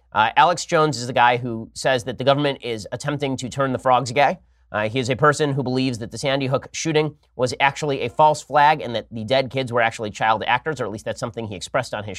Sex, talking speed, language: male, 260 wpm, English